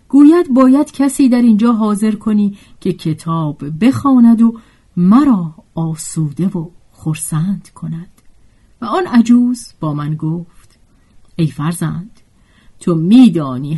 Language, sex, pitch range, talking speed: Persian, female, 160-240 Hz, 115 wpm